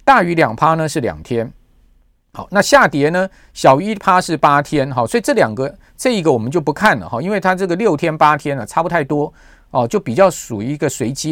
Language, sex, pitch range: Chinese, male, 130-180 Hz